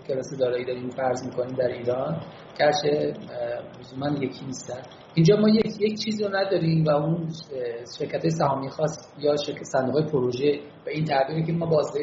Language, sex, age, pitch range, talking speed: Persian, male, 40-59, 140-180 Hz, 165 wpm